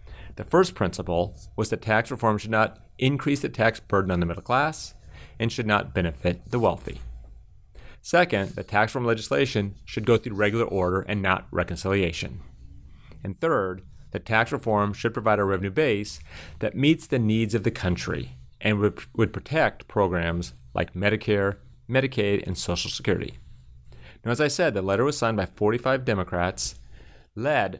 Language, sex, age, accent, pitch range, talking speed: English, male, 30-49, American, 95-115 Hz, 165 wpm